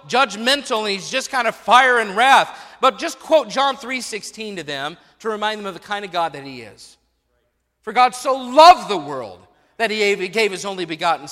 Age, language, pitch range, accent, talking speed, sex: 40-59, English, 155-230 Hz, American, 210 wpm, male